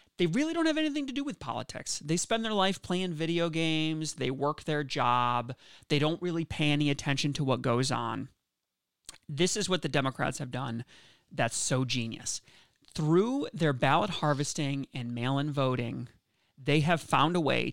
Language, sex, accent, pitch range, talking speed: English, male, American, 135-175 Hz, 175 wpm